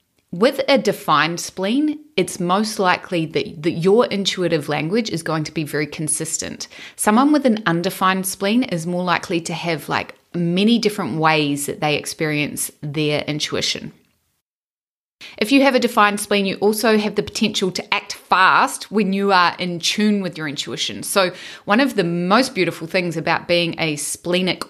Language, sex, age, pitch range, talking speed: English, female, 30-49, 160-200 Hz, 170 wpm